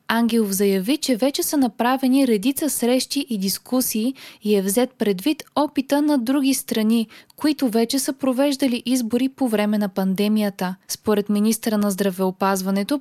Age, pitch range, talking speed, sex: 20-39, 210-270 Hz, 145 wpm, female